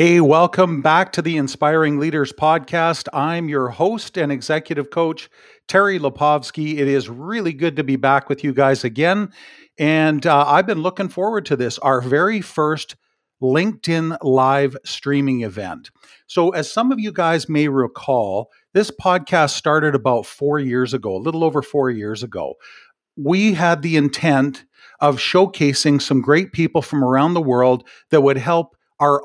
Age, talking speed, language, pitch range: 50-69, 165 wpm, English, 135-165 Hz